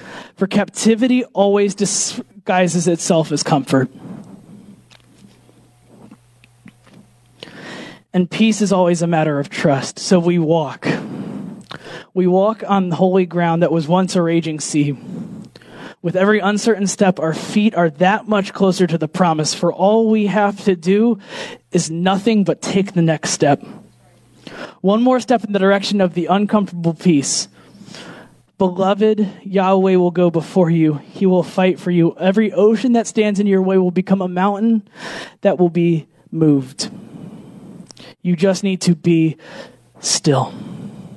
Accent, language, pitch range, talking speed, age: American, English, 165-200 Hz, 145 wpm, 20-39